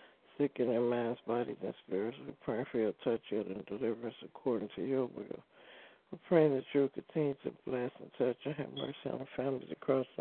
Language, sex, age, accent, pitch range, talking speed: English, male, 60-79, American, 120-140 Hz, 205 wpm